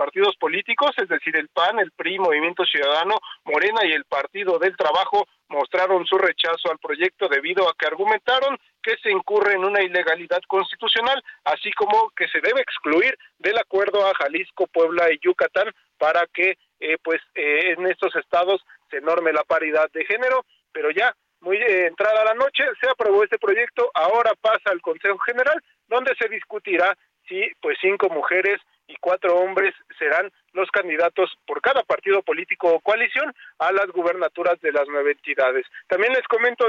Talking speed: 170 wpm